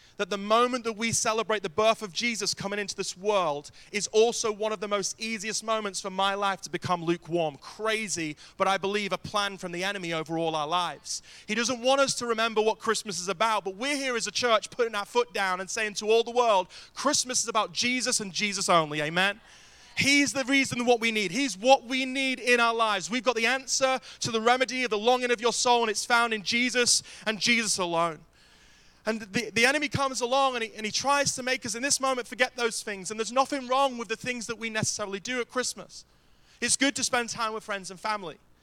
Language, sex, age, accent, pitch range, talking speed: English, male, 30-49, British, 195-240 Hz, 235 wpm